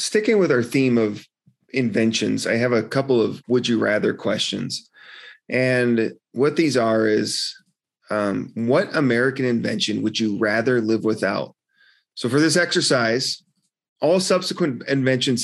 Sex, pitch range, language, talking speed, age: male, 115-140 Hz, English, 140 wpm, 30-49